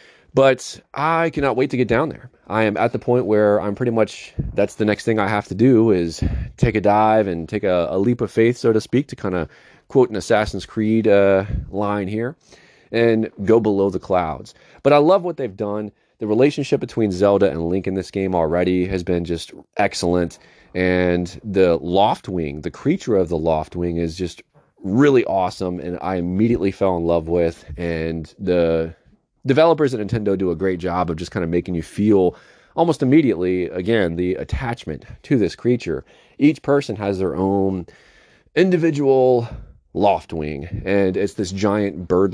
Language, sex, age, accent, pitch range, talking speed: English, male, 30-49, American, 90-115 Hz, 185 wpm